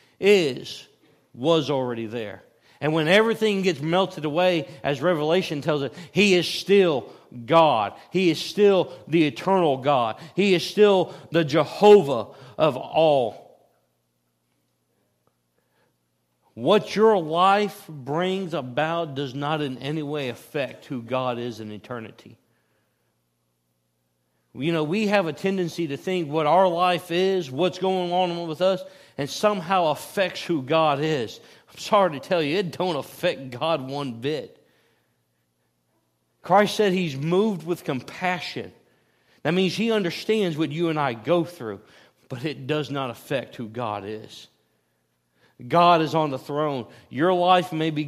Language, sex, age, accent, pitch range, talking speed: English, male, 40-59, American, 130-185 Hz, 140 wpm